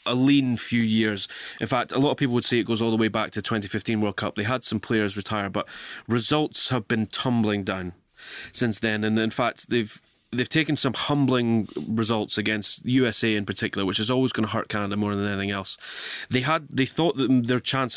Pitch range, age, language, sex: 105-125 Hz, 20-39, English, male